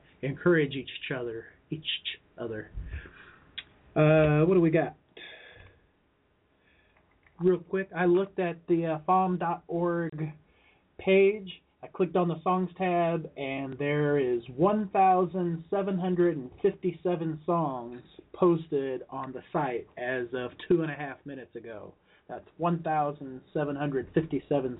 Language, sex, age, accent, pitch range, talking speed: English, male, 30-49, American, 135-175 Hz, 105 wpm